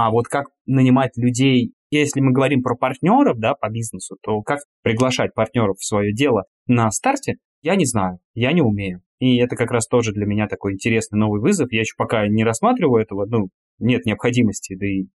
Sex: male